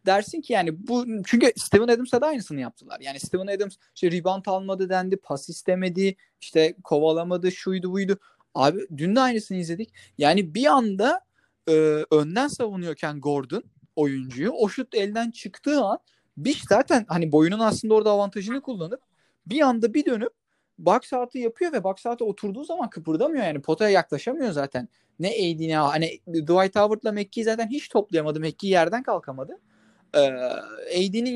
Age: 30-49